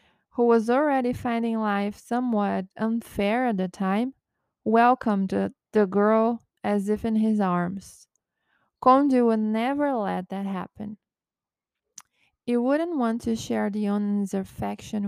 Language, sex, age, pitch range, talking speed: Portuguese, female, 20-39, 200-240 Hz, 125 wpm